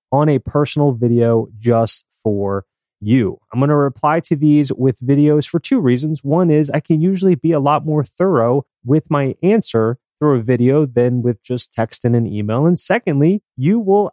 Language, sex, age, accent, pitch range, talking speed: English, male, 20-39, American, 115-150 Hz, 190 wpm